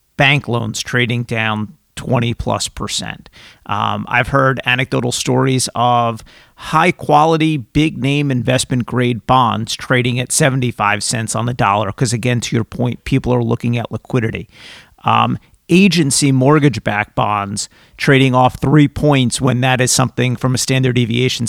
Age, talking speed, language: 50-69, 135 wpm, English